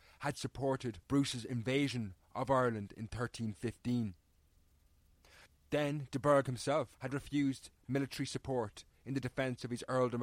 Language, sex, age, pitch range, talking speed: English, male, 30-49, 95-135 Hz, 130 wpm